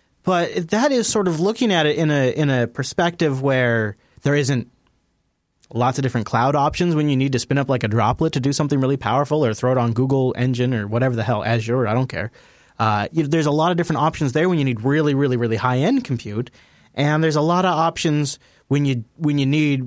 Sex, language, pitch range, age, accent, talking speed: male, English, 130-175 Hz, 30-49, American, 230 wpm